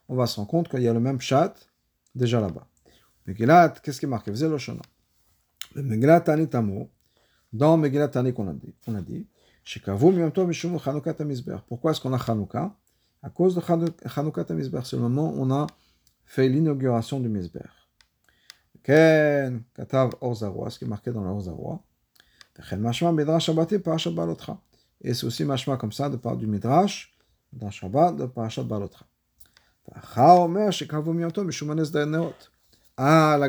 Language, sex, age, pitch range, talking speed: French, male, 50-69, 115-160 Hz, 140 wpm